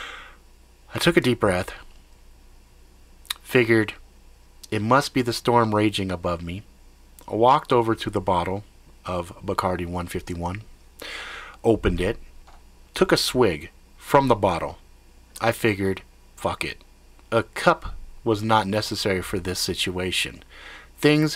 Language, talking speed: English, 125 wpm